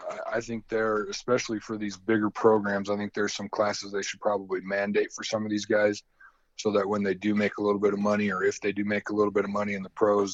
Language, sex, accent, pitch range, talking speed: English, male, American, 95-110 Hz, 265 wpm